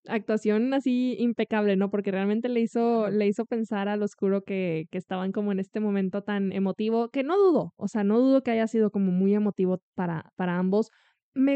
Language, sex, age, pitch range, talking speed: Spanish, female, 20-39, 195-245 Hz, 195 wpm